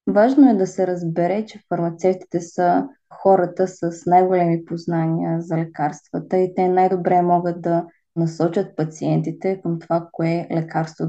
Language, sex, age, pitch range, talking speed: Bulgarian, female, 20-39, 170-185 Hz, 140 wpm